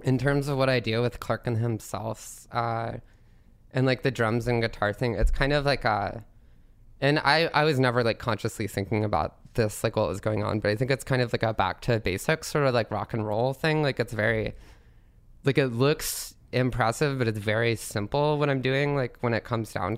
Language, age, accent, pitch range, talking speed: English, 20-39, American, 105-120 Hz, 225 wpm